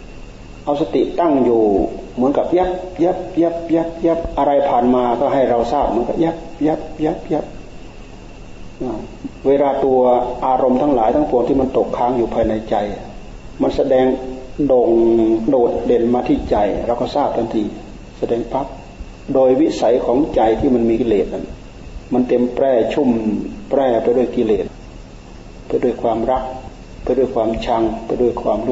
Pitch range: 110-130 Hz